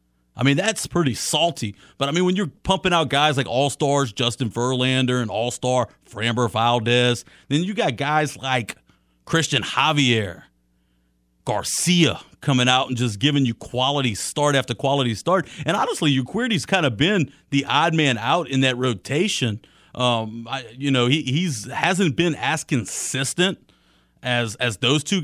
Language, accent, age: English, American, 40-59